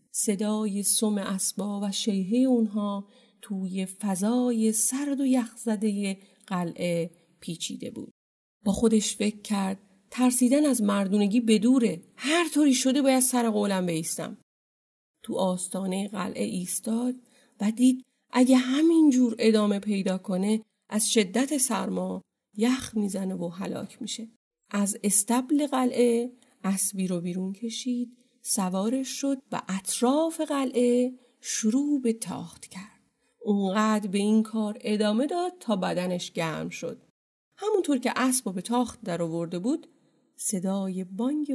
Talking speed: 125 wpm